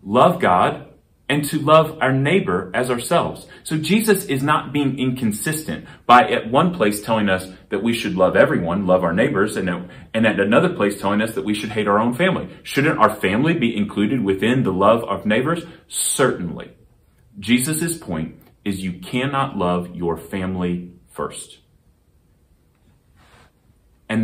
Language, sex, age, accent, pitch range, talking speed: English, male, 30-49, American, 120-200 Hz, 160 wpm